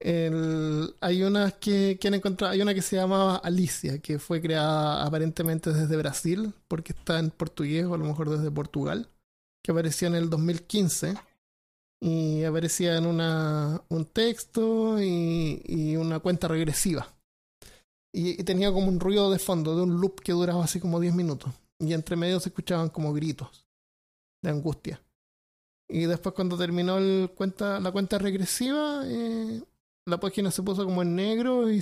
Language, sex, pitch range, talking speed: Spanish, male, 160-190 Hz, 165 wpm